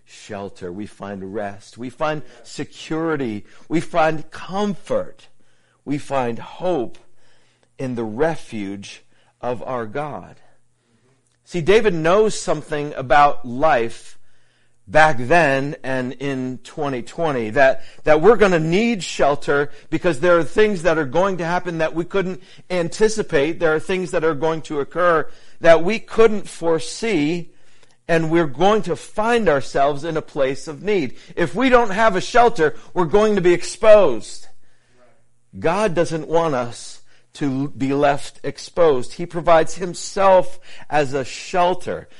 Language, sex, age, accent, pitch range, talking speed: English, male, 50-69, American, 130-175 Hz, 140 wpm